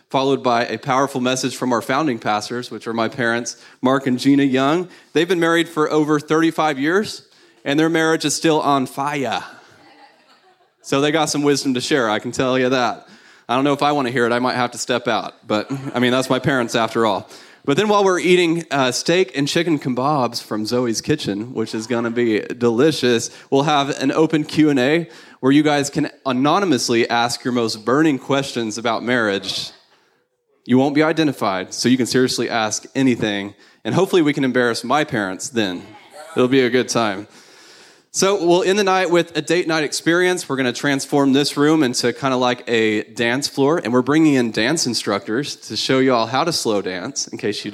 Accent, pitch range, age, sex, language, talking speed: American, 120-150 Hz, 30-49, male, English, 205 wpm